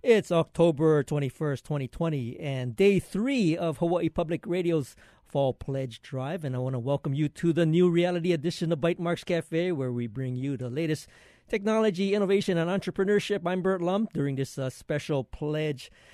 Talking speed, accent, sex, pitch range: 175 wpm, American, male, 135-180 Hz